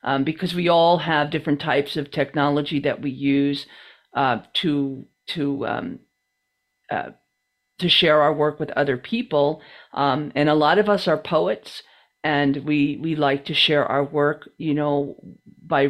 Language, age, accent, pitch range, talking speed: English, 50-69, American, 145-180 Hz, 160 wpm